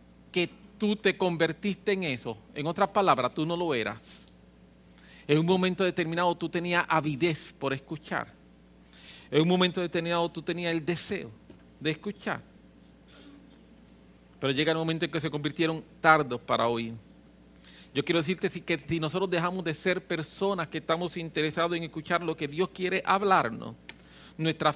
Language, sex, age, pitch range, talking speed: English, male, 40-59, 145-185 Hz, 155 wpm